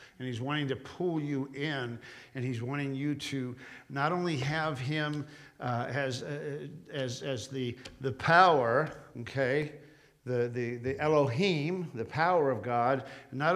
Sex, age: male, 50-69